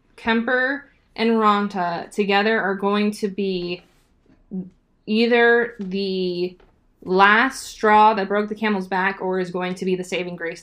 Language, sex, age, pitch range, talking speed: English, female, 20-39, 185-215 Hz, 140 wpm